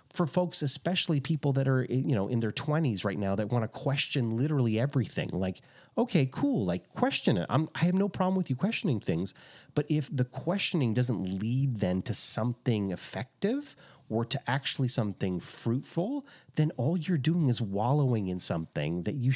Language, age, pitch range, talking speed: English, 30-49, 120-170 Hz, 180 wpm